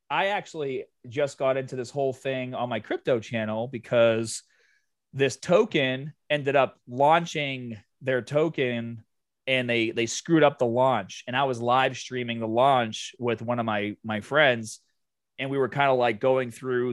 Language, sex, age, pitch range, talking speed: English, male, 30-49, 115-150 Hz, 170 wpm